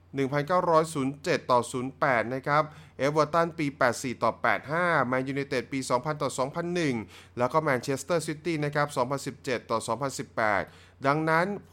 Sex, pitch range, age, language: male, 120-165 Hz, 20-39, Thai